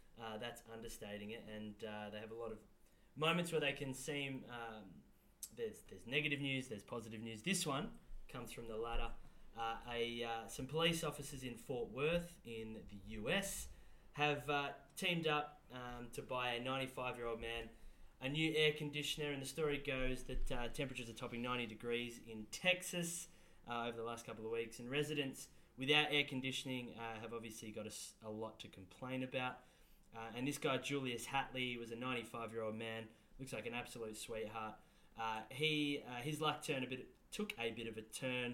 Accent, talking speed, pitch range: Australian, 190 wpm, 115-145 Hz